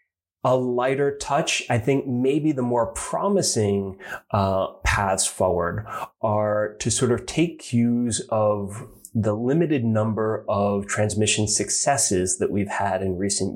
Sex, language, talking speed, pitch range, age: male, English, 135 wpm, 100-125 Hz, 30-49